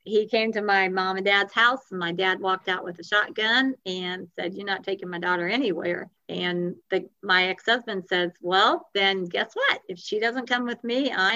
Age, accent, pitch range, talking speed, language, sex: 50-69, American, 185-225 Hz, 205 wpm, English, female